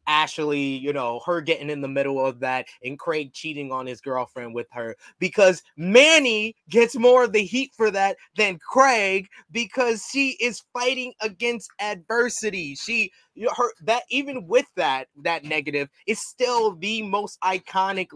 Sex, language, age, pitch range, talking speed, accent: male, English, 20-39, 155-225 Hz, 160 wpm, American